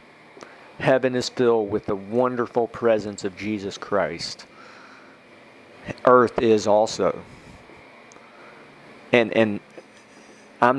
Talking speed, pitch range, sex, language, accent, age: 90 wpm, 110-130 Hz, male, English, American, 40-59